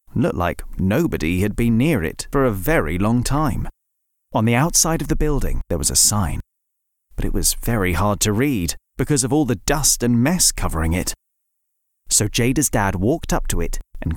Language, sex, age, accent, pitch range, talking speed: English, male, 30-49, British, 90-145 Hz, 195 wpm